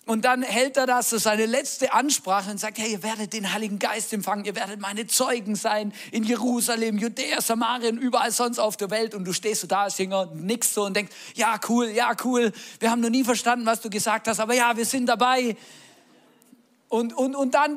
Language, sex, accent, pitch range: German, male, German, 185-240 Hz